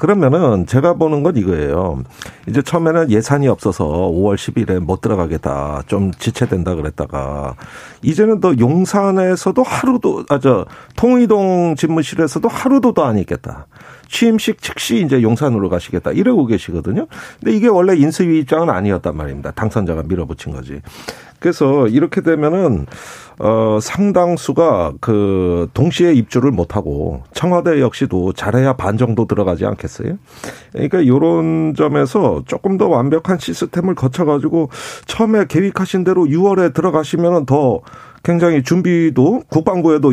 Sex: male